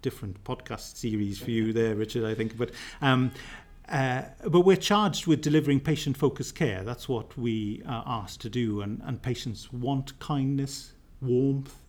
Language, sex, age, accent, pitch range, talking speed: English, male, 40-59, British, 110-135 Hz, 160 wpm